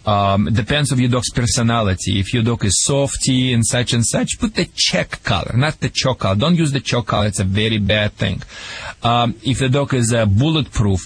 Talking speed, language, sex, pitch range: 220 wpm, English, male, 105-130 Hz